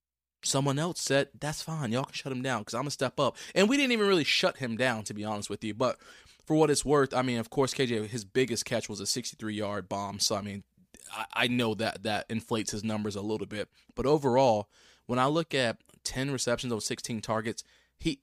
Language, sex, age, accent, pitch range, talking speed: English, male, 20-39, American, 105-125 Hz, 235 wpm